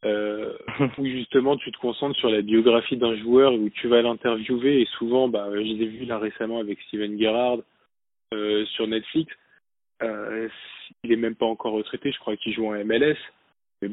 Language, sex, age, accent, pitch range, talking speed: French, male, 20-39, French, 115-130 Hz, 190 wpm